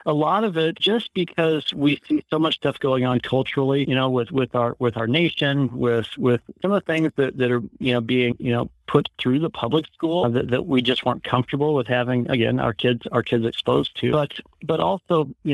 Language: English